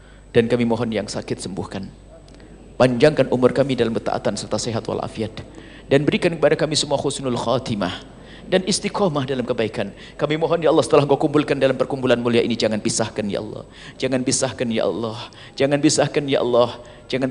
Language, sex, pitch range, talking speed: Indonesian, male, 115-175 Hz, 170 wpm